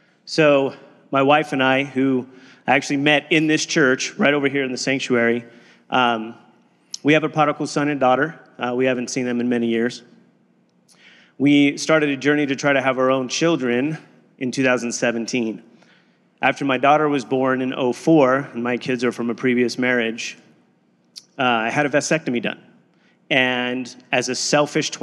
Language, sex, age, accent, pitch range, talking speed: English, male, 30-49, American, 125-140 Hz, 175 wpm